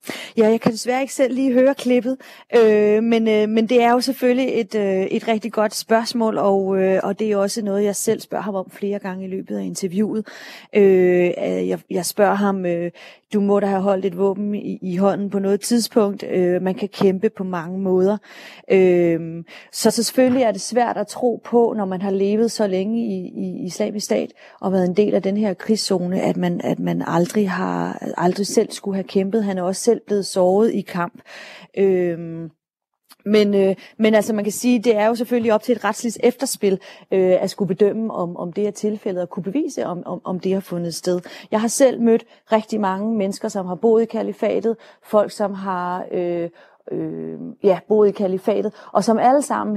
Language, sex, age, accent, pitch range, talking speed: Danish, female, 30-49, native, 190-220 Hz, 205 wpm